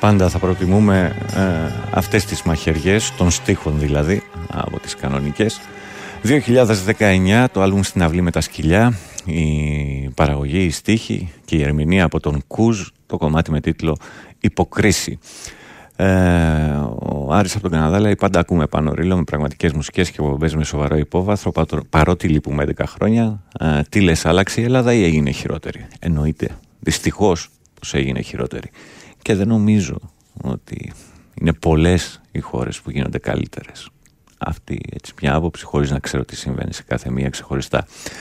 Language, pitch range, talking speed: Greek, 75-100 Hz, 150 wpm